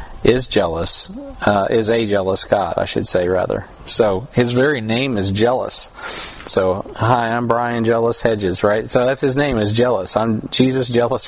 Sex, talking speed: male, 175 wpm